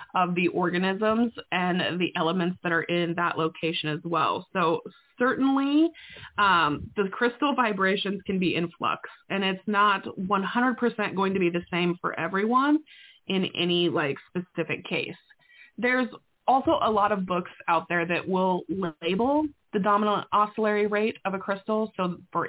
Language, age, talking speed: English, 20-39, 155 wpm